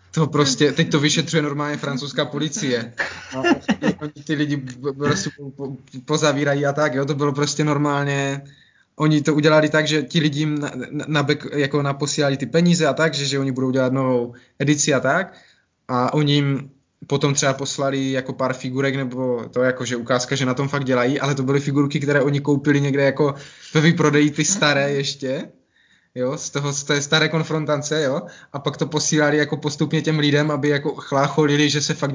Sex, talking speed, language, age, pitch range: male, 190 wpm, Czech, 20-39, 135-150 Hz